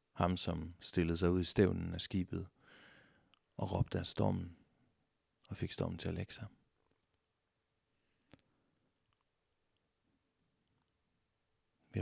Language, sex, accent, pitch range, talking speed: Danish, male, native, 90-105 Hz, 105 wpm